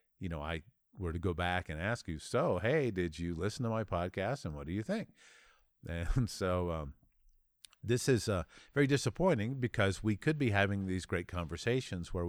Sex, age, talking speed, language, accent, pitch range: male, 50-69, 195 wpm, English, American, 85-110 Hz